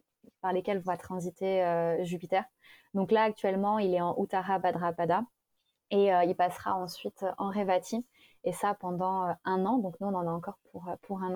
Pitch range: 185-220 Hz